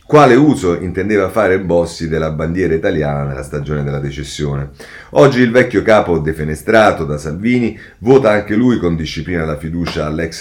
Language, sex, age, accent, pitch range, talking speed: Italian, male, 40-59, native, 80-110 Hz, 155 wpm